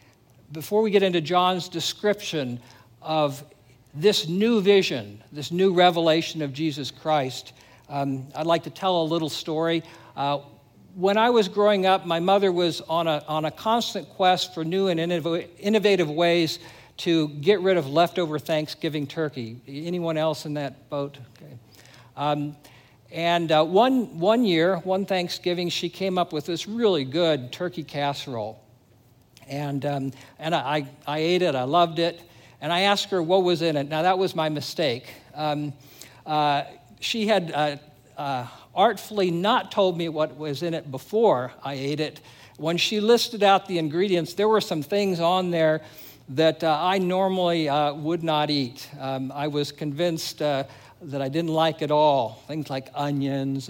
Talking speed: 165 wpm